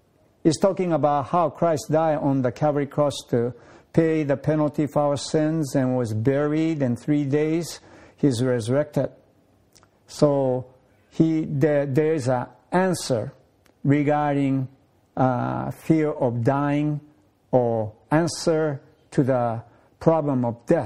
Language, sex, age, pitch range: Japanese, male, 60-79, 120-160 Hz